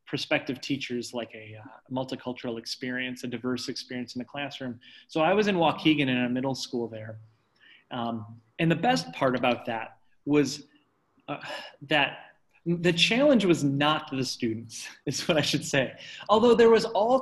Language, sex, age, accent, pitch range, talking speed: English, male, 30-49, American, 135-210 Hz, 165 wpm